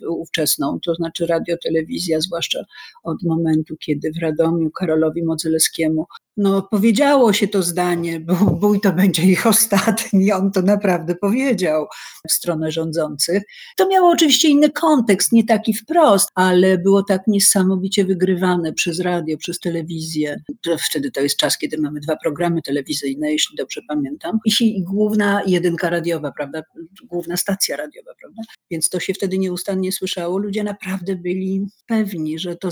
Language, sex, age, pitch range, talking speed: Polish, female, 50-69, 165-220 Hz, 155 wpm